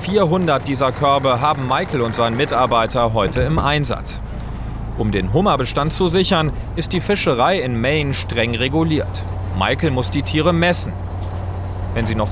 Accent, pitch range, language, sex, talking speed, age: German, 95-155 Hz, German, male, 150 wpm, 40-59